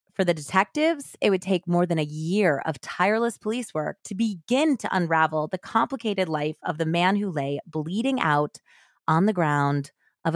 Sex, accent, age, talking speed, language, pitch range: female, American, 20-39, 185 wpm, English, 155-210 Hz